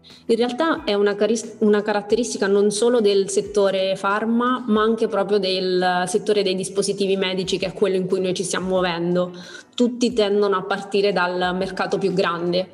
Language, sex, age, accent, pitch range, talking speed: Italian, female, 20-39, native, 180-205 Hz, 170 wpm